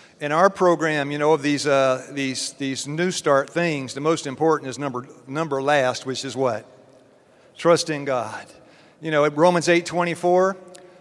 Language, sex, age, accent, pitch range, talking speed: English, male, 50-69, American, 140-170 Hz, 180 wpm